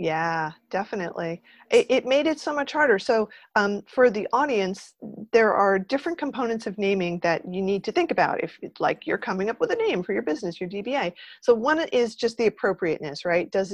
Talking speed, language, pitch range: 205 wpm, English, 180-235 Hz